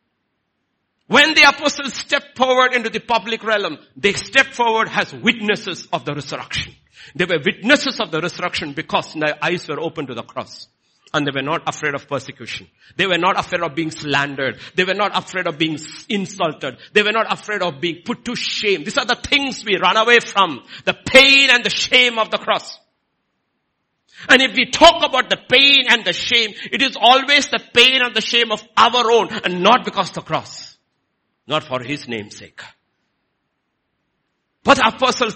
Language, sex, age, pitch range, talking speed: English, male, 60-79, 150-230 Hz, 185 wpm